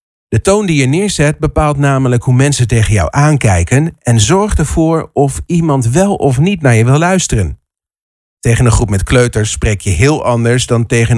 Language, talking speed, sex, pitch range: Dutch, 190 wpm, male, 110-155 Hz